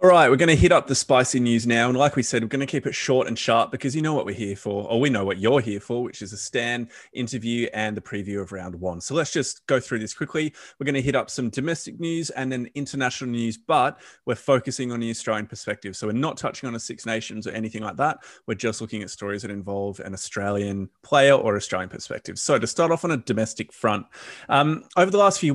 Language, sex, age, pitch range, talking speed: English, male, 20-39, 105-135 Hz, 265 wpm